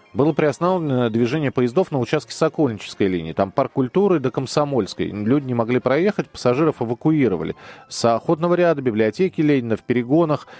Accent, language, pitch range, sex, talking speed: native, Russian, 105-145 Hz, male, 145 wpm